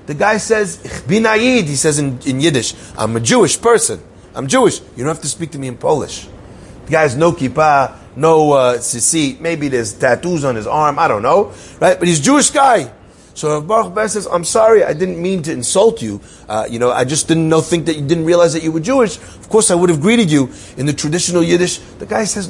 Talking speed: 240 wpm